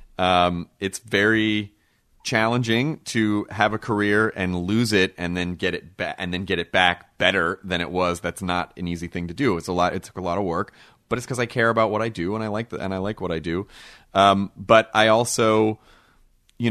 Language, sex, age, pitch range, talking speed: English, male, 30-49, 90-105 Hz, 235 wpm